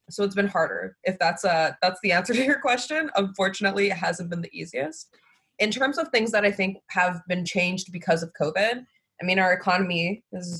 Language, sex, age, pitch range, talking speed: English, female, 20-39, 175-205 Hz, 210 wpm